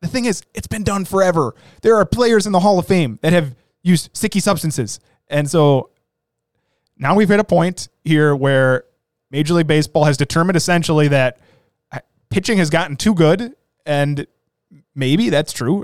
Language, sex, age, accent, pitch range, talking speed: English, male, 20-39, American, 140-180 Hz, 170 wpm